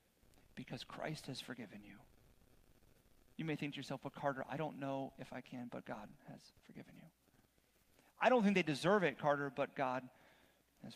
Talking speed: 180 wpm